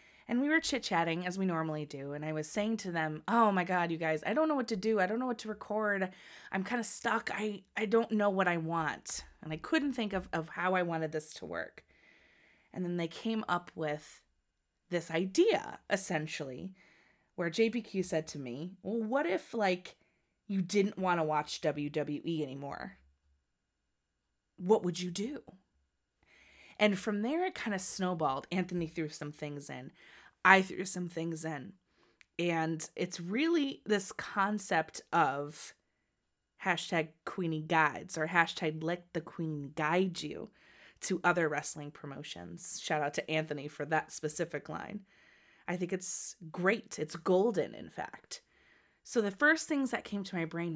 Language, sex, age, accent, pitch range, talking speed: English, female, 20-39, American, 155-200 Hz, 170 wpm